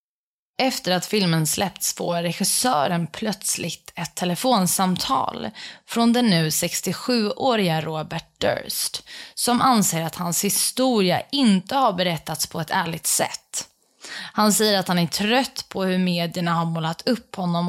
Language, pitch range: Swedish, 170-220 Hz